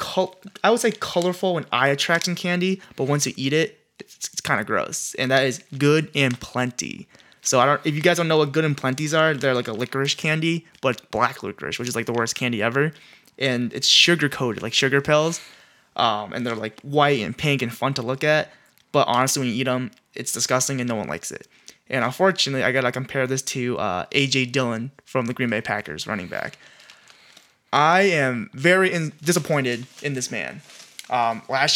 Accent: American